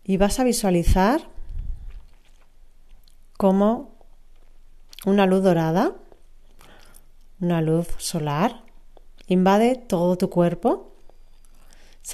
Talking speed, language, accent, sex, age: 80 wpm, Spanish, Spanish, female, 40-59